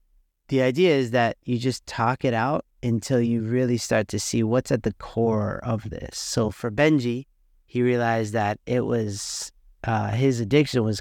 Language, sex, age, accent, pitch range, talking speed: English, male, 30-49, American, 110-135 Hz, 180 wpm